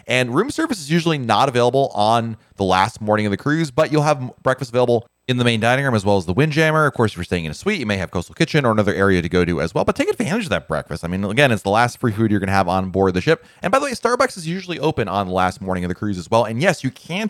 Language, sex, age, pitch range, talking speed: English, male, 30-49, 95-140 Hz, 325 wpm